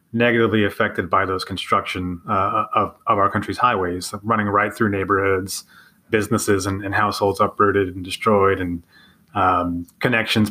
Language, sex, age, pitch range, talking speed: English, male, 30-49, 100-115 Hz, 145 wpm